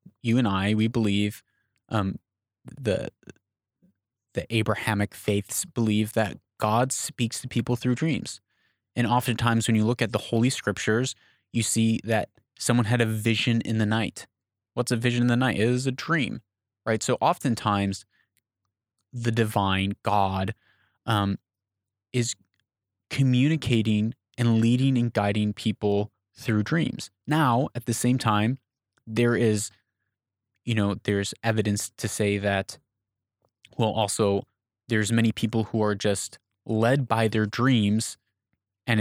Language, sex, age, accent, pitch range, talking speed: English, male, 20-39, American, 105-120 Hz, 140 wpm